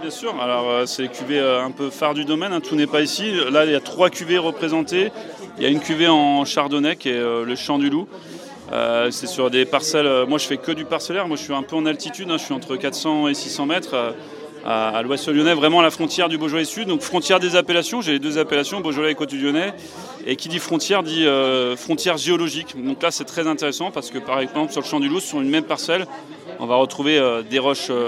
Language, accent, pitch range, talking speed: French, French, 140-165 Hz, 245 wpm